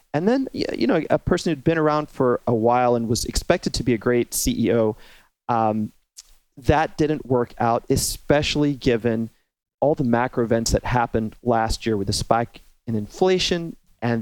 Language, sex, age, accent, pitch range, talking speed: English, male, 30-49, American, 115-140 Hz, 175 wpm